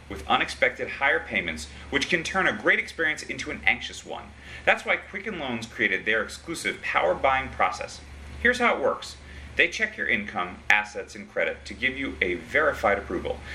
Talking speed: 180 wpm